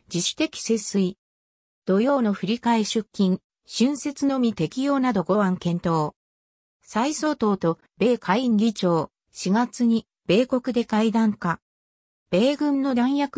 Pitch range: 175-260 Hz